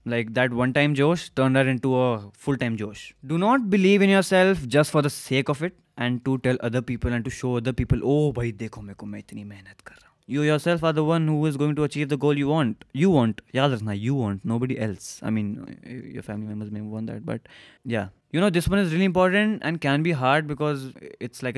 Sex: male